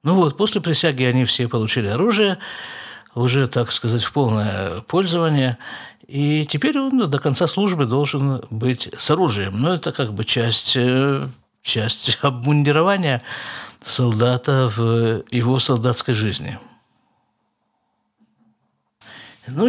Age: 50-69